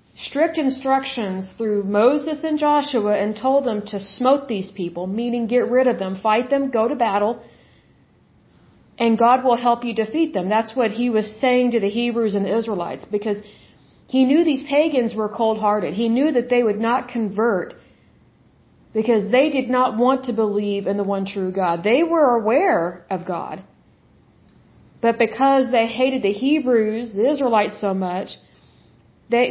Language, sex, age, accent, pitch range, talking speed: Hindi, female, 40-59, American, 210-255 Hz, 170 wpm